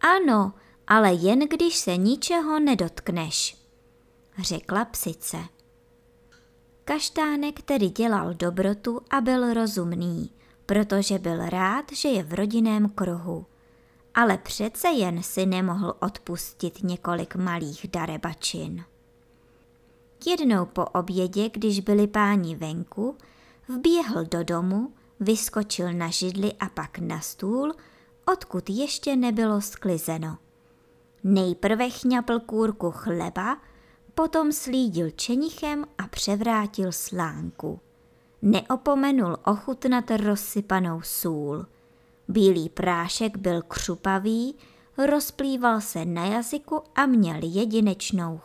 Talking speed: 100 wpm